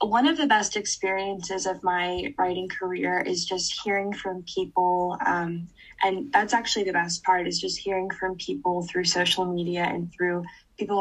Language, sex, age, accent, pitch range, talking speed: English, female, 10-29, American, 175-190 Hz, 175 wpm